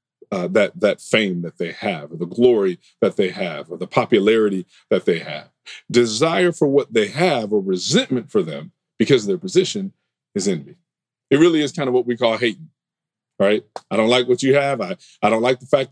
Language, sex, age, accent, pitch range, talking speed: English, male, 50-69, American, 130-185 Hz, 210 wpm